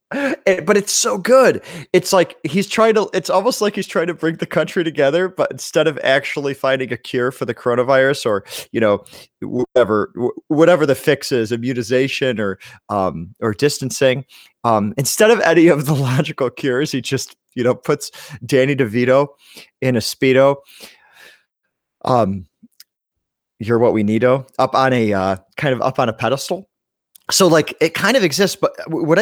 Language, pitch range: English, 125-170 Hz